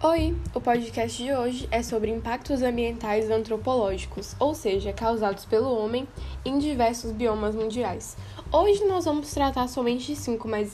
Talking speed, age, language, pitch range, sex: 150 wpm, 10-29, Portuguese, 210-260 Hz, female